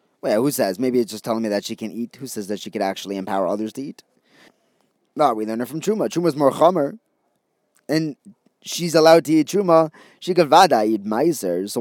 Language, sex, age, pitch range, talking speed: English, male, 20-39, 110-150 Hz, 220 wpm